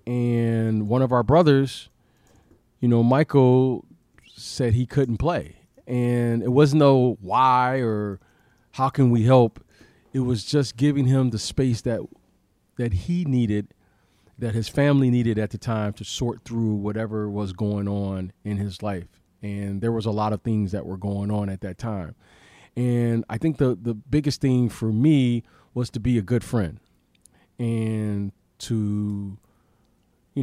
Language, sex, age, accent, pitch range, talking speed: English, male, 40-59, American, 105-125 Hz, 165 wpm